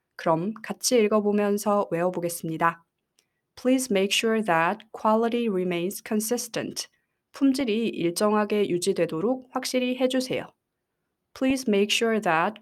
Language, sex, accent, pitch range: Korean, female, native, 185-245 Hz